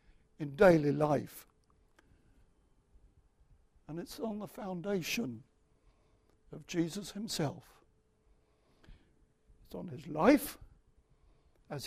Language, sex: English, male